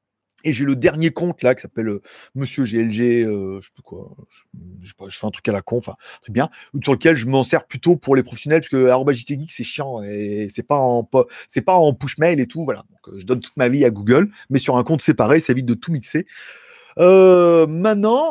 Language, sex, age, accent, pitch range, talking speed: French, male, 30-49, French, 120-185 Hz, 245 wpm